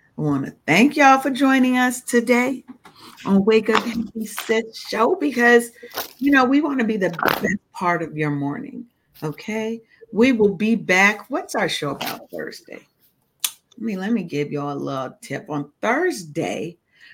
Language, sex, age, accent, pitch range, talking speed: English, female, 40-59, American, 155-235 Hz, 175 wpm